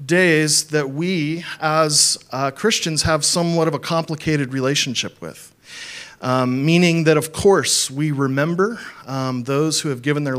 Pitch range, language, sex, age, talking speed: 130-160 Hz, English, male, 40-59, 150 wpm